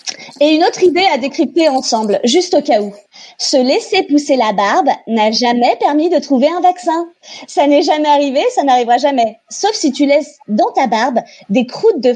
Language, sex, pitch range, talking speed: French, female, 245-330 Hz, 195 wpm